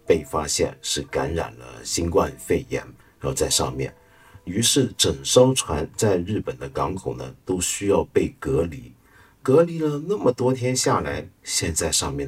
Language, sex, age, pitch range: Chinese, male, 50-69, 95-140 Hz